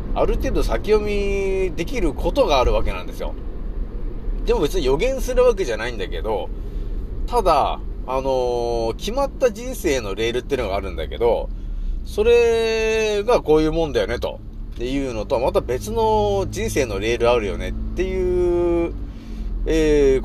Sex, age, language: male, 30-49, Japanese